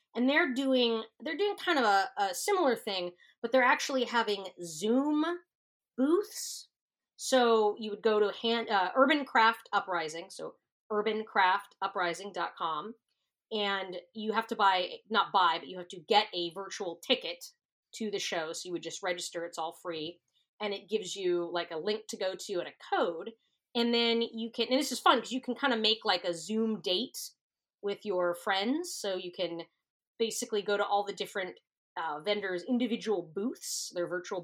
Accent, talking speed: American, 185 wpm